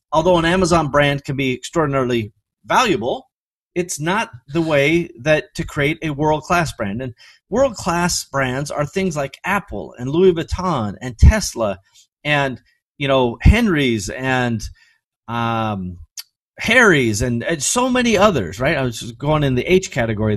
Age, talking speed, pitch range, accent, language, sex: 30-49, 150 wpm, 120-180 Hz, American, English, male